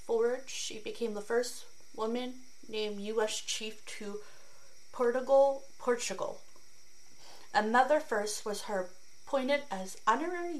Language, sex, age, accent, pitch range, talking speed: English, female, 30-49, American, 195-255 Hz, 100 wpm